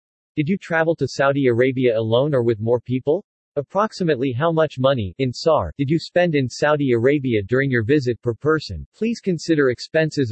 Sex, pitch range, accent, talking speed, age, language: male, 125-155 Hz, American, 180 wpm, 40-59, English